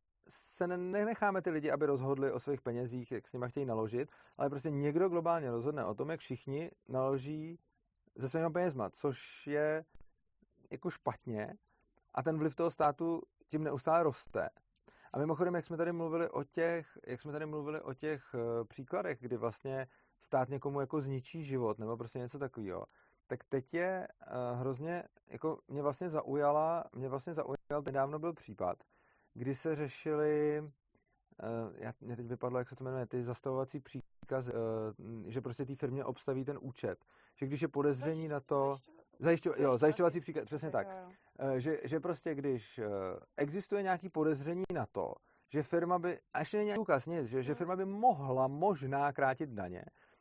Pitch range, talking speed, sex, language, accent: 130-165 Hz, 165 wpm, male, Czech, native